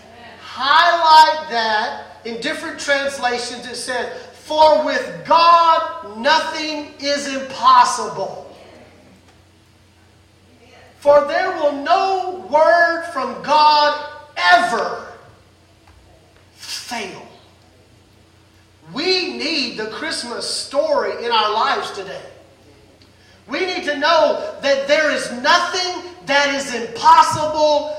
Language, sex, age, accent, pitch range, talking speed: English, male, 40-59, American, 235-320 Hz, 90 wpm